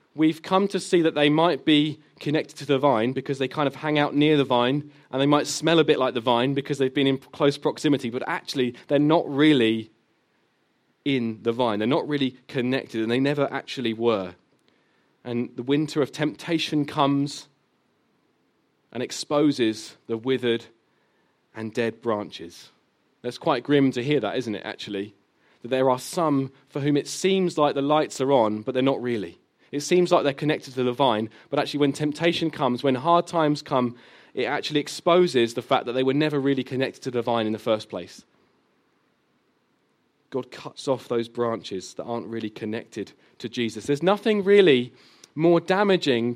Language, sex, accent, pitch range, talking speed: English, male, British, 125-150 Hz, 185 wpm